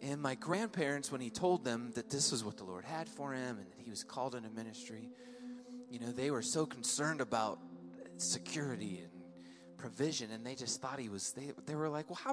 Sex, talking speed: male, 220 wpm